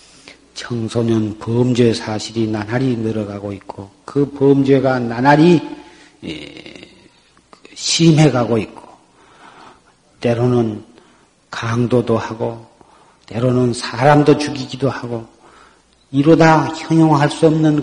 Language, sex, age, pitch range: Korean, male, 50-69, 120-155 Hz